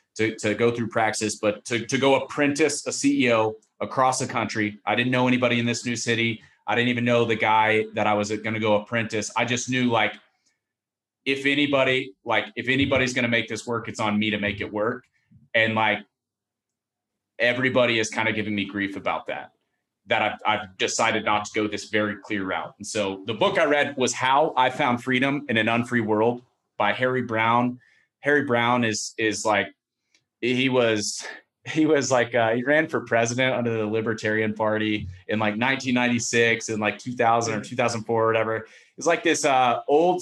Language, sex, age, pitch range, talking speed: English, male, 30-49, 110-130 Hz, 195 wpm